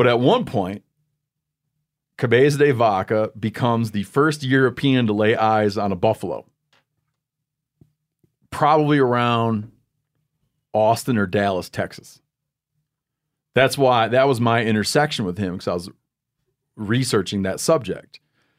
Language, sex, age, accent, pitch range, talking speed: English, male, 40-59, American, 110-145 Hz, 120 wpm